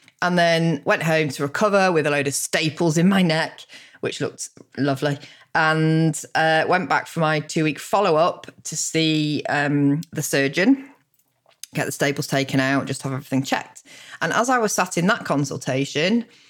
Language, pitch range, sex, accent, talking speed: English, 140-170 Hz, female, British, 170 wpm